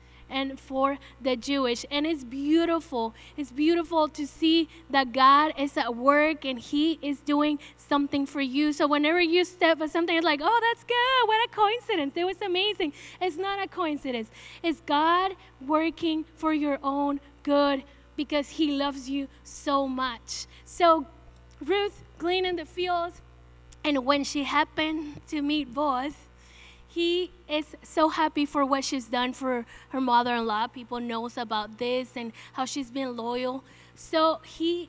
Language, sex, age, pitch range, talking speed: English, female, 10-29, 275-325 Hz, 155 wpm